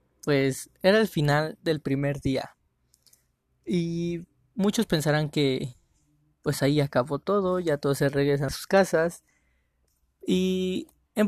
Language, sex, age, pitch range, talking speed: Spanish, male, 20-39, 135-175 Hz, 130 wpm